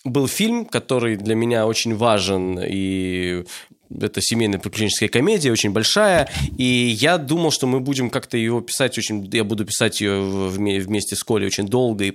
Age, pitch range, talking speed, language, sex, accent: 20-39, 110-145 Hz, 165 wpm, Russian, male, native